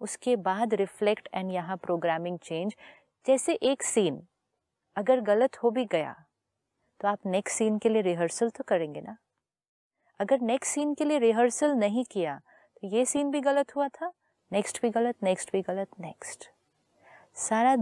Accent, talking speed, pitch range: native, 160 wpm, 175-235 Hz